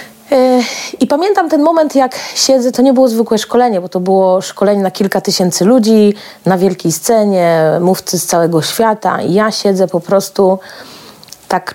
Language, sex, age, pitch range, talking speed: Polish, female, 30-49, 185-235 Hz, 165 wpm